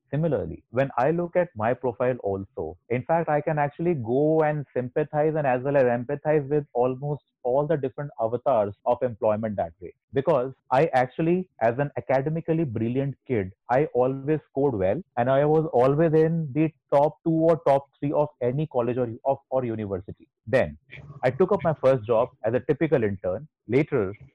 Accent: Indian